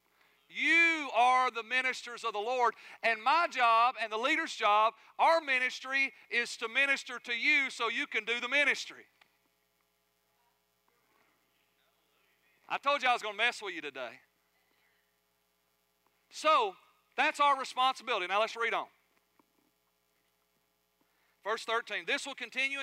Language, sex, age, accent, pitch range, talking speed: English, male, 40-59, American, 215-255 Hz, 135 wpm